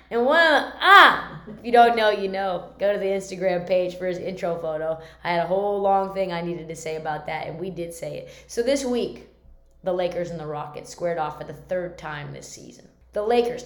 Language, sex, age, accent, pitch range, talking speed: English, female, 20-39, American, 180-255 Hz, 240 wpm